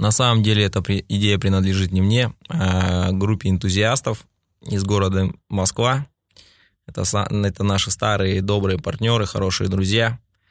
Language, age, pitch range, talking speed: Russian, 20-39, 95-115 Hz, 120 wpm